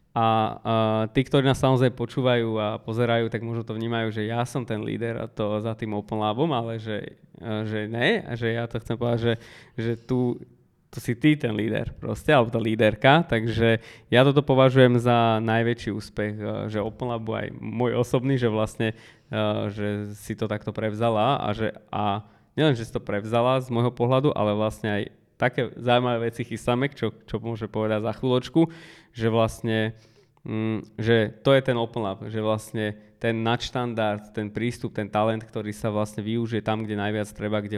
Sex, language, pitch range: male, Slovak, 105-120 Hz